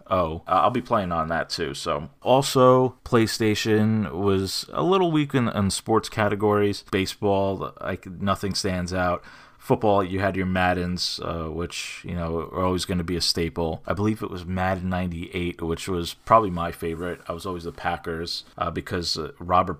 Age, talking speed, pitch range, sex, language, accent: 20-39, 180 wpm, 85-100 Hz, male, English, American